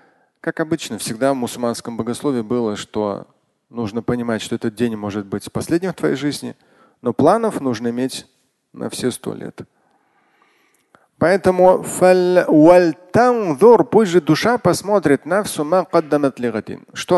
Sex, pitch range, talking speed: male, 120-165 Hz, 130 wpm